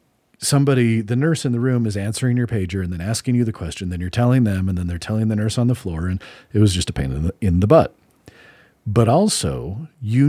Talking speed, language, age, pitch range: 250 wpm, English, 40-59, 85-115 Hz